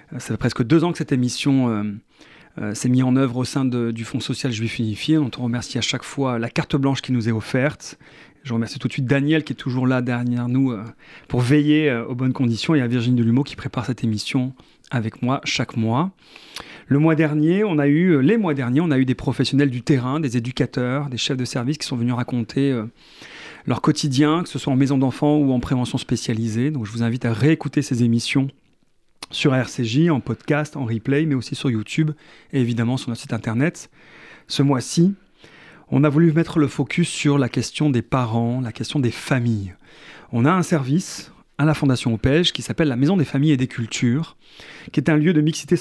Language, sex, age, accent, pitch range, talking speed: French, male, 40-59, French, 125-150 Hz, 220 wpm